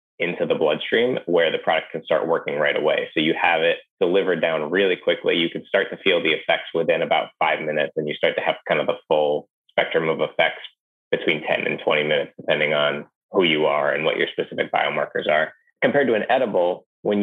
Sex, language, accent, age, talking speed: male, English, American, 20-39, 220 wpm